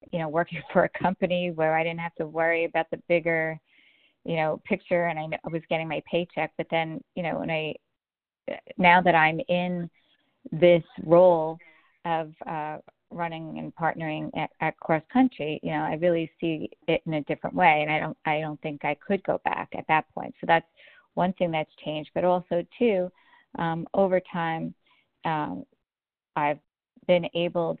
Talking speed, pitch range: 180 wpm, 155-175 Hz